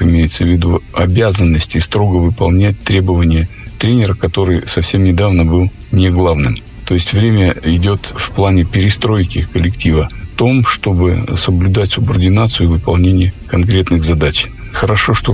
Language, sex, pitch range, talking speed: Russian, male, 90-110 Hz, 130 wpm